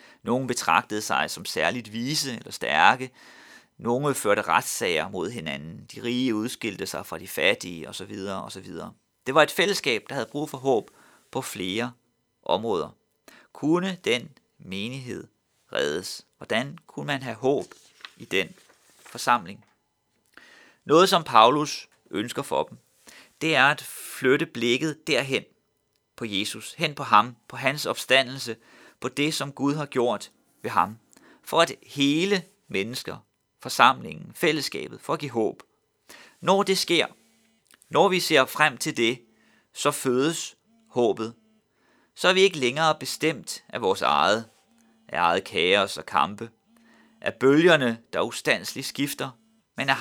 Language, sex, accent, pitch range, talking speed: Danish, male, native, 120-180 Hz, 140 wpm